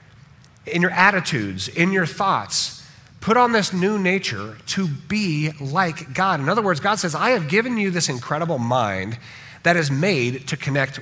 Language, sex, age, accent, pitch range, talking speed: English, male, 40-59, American, 135-195 Hz, 175 wpm